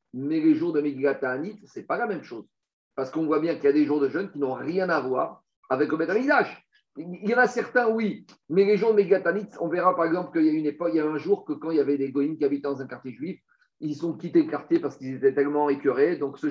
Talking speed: 285 wpm